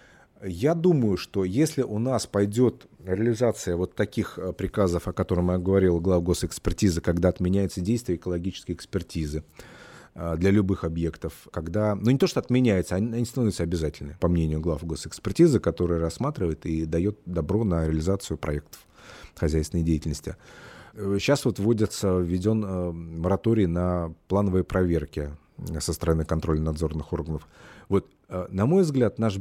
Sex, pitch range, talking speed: male, 85-105 Hz, 135 wpm